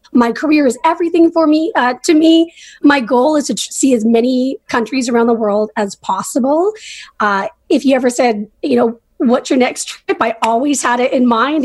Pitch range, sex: 245-315 Hz, female